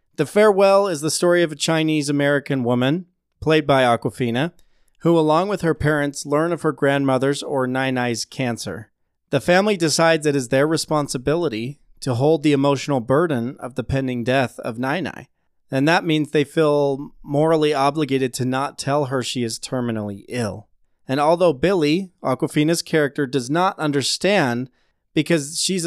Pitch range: 125-155 Hz